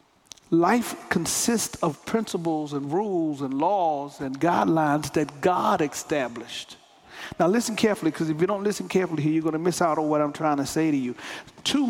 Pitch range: 160-210 Hz